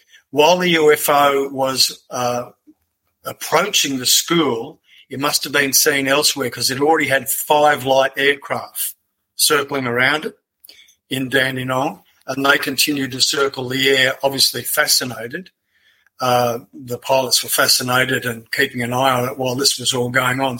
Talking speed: 150 wpm